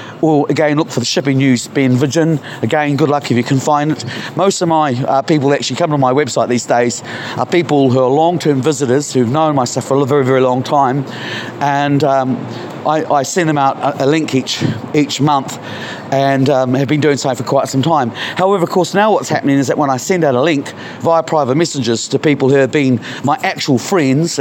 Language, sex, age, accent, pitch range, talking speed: English, male, 40-59, British, 125-160 Hz, 225 wpm